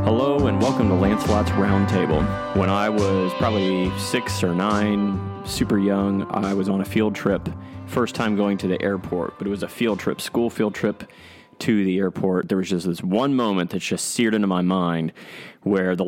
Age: 30-49